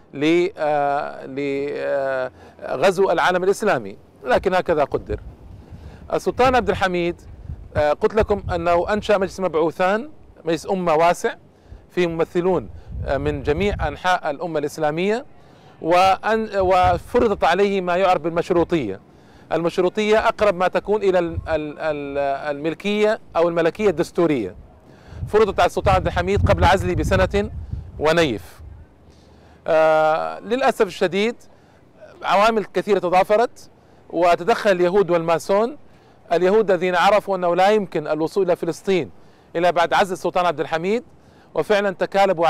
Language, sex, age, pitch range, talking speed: Arabic, male, 40-59, 155-195 Hz, 105 wpm